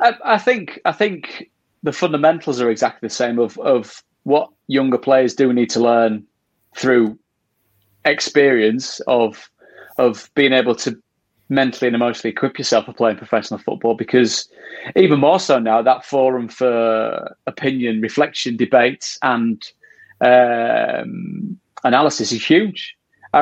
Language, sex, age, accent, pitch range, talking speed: English, male, 30-49, British, 115-145 Hz, 135 wpm